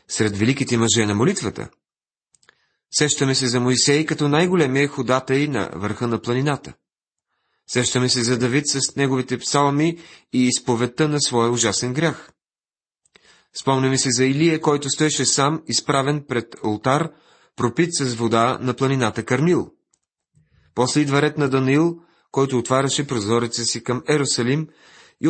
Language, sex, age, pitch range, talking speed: Bulgarian, male, 30-49, 120-150 Hz, 135 wpm